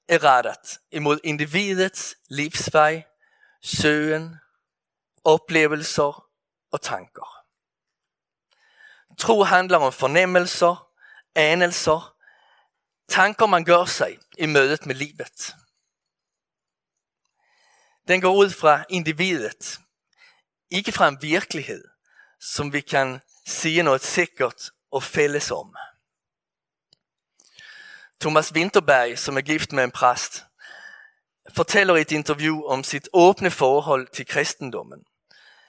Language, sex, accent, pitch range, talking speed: Danish, male, Swedish, 145-190 Hz, 100 wpm